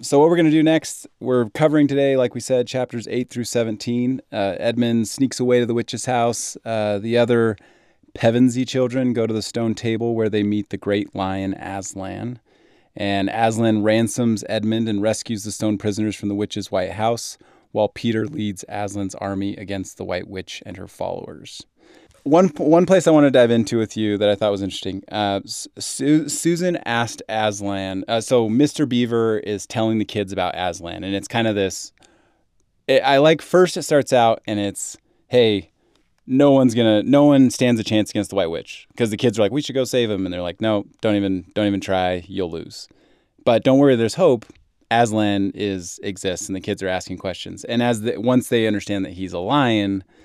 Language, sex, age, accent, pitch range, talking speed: English, male, 30-49, American, 100-125 Hz, 205 wpm